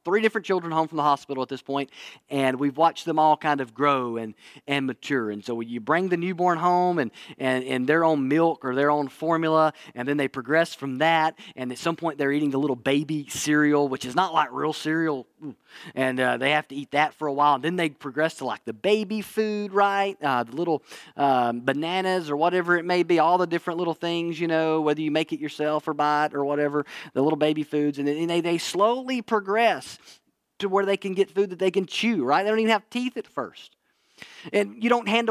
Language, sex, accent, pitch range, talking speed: English, male, American, 145-195 Hz, 235 wpm